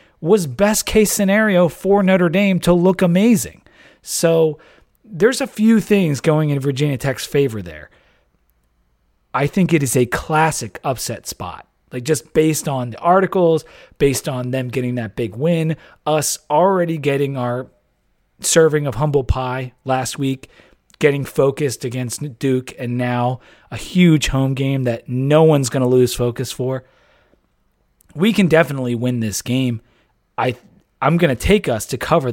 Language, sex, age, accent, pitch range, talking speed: English, male, 40-59, American, 125-160 Hz, 155 wpm